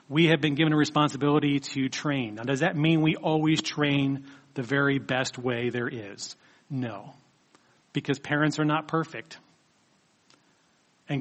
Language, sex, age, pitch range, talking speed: English, male, 40-59, 135-155 Hz, 150 wpm